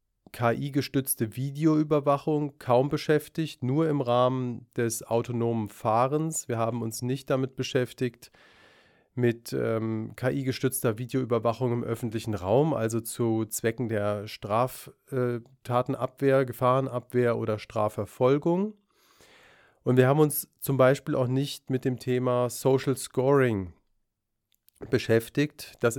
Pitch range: 115-140 Hz